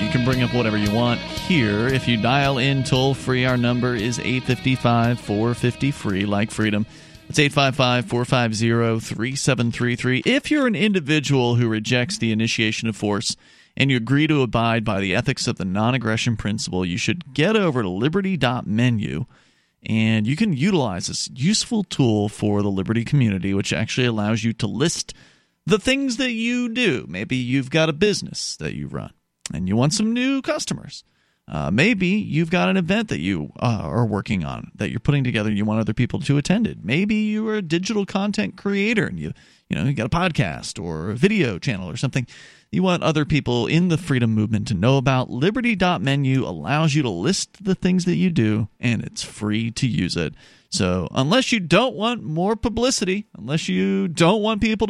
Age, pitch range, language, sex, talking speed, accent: 40-59, 115-185 Hz, English, male, 185 wpm, American